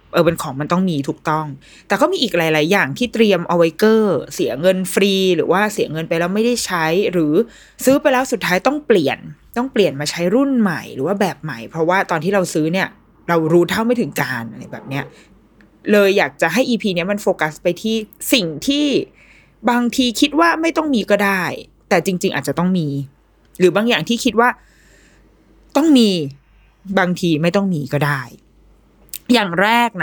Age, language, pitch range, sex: 20-39, Thai, 160-225 Hz, female